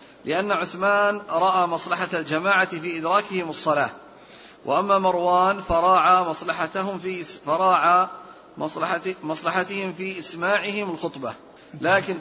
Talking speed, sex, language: 95 wpm, male, Arabic